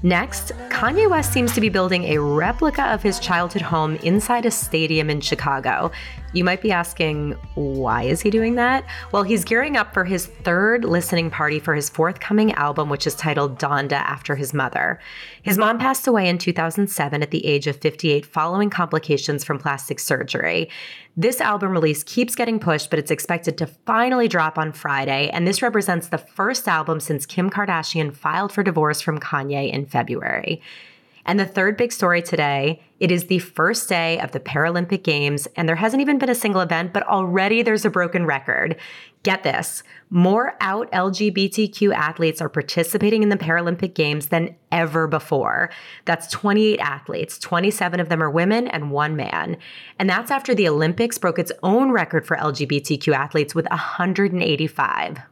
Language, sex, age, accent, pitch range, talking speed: English, female, 30-49, American, 155-205 Hz, 175 wpm